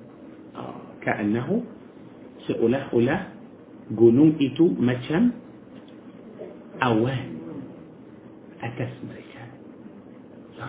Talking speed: 55 wpm